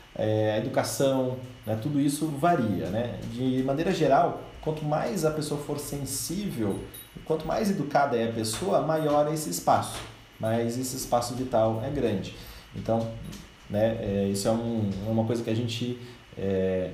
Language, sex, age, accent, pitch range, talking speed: Portuguese, male, 30-49, Brazilian, 110-150 Hz, 160 wpm